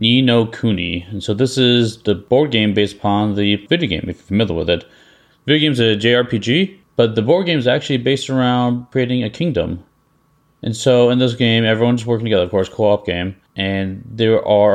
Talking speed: 210 wpm